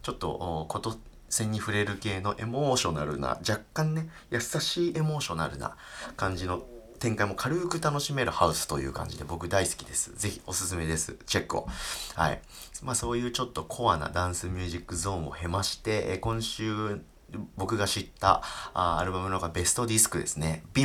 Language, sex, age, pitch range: Japanese, male, 30-49, 85-120 Hz